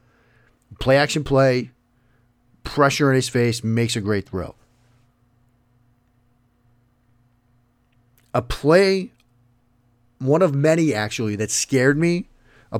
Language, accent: English, American